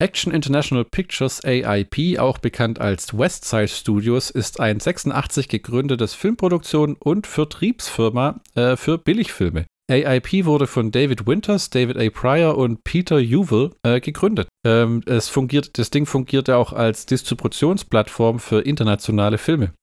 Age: 40-59